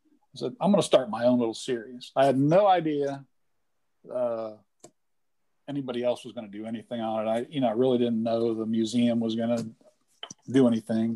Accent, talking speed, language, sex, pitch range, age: American, 205 wpm, English, male, 110-135 Hz, 50-69